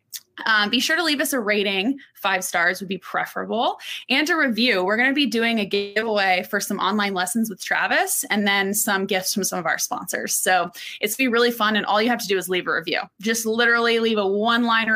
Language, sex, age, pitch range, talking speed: English, female, 20-39, 135-220 Hz, 230 wpm